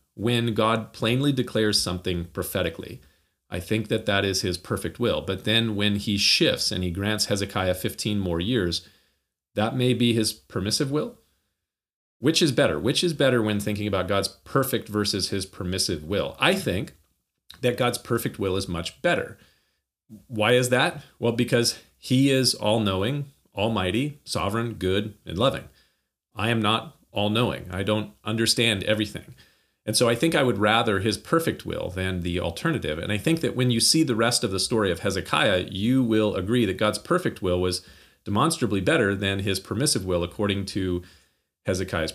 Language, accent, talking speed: English, American, 170 wpm